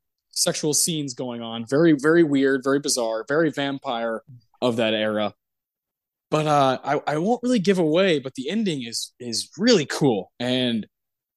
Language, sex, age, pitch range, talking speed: English, male, 20-39, 125-165 Hz, 160 wpm